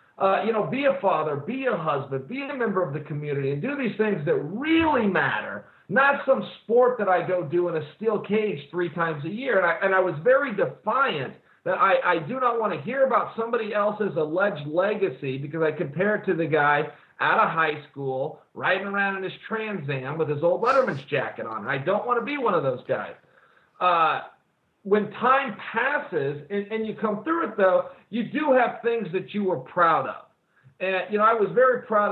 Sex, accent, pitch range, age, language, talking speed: male, American, 170-230 Hz, 40-59, English, 215 wpm